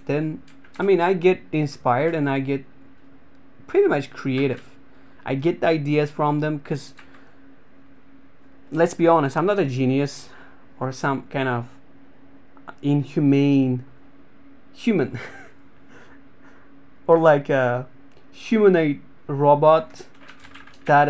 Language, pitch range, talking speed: English, 135-175 Hz, 105 wpm